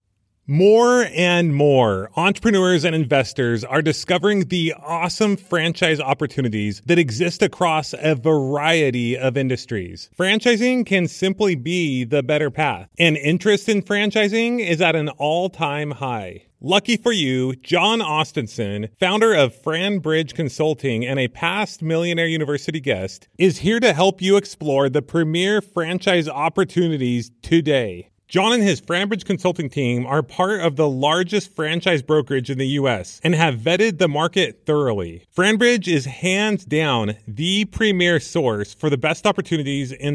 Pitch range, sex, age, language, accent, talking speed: 140-185 Hz, male, 30-49, English, American, 145 wpm